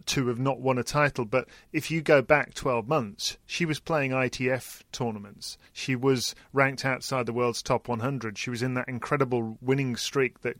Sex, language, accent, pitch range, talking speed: male, English, British, 120-135 Hz, 195 wpm